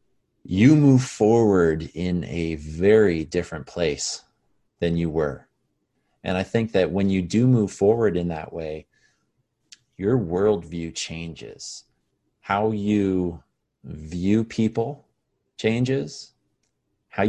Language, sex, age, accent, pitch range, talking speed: English, male, 30-49, American, 85-110 Hz, 110 wpm